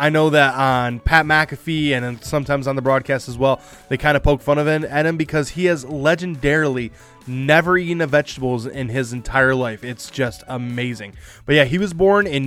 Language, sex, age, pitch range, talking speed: English, male, 20-39, 130-155 Hz, 205 wpm